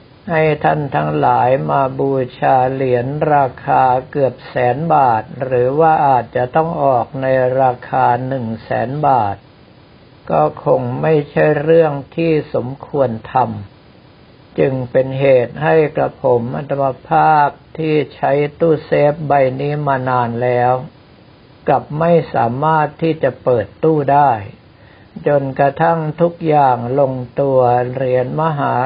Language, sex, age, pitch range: Thai, male, 60-79, 125-155 Hz